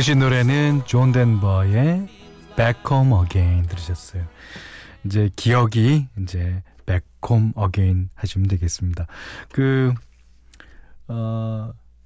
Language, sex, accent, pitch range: Korean, male, native, 95-135 Hz